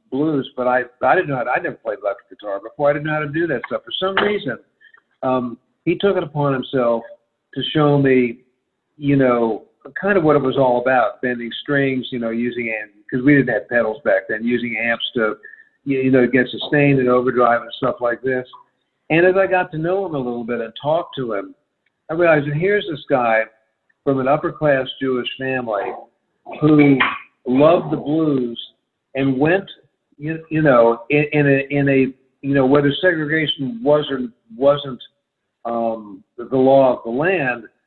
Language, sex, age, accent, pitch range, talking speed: English, male, 50-69, American, 125-150 Hz, 190 wpm